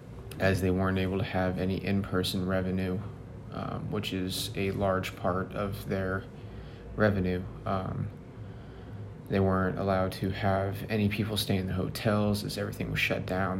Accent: American